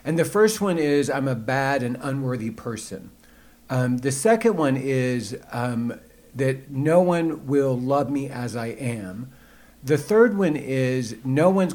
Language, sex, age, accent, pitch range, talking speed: English, male, 50-69, American, 125-165 Hz, 165 wpm